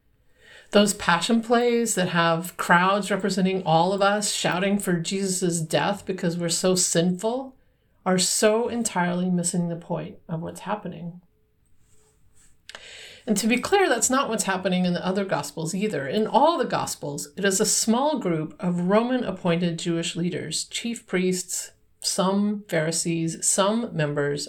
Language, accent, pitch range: English, American, 170-210 Hz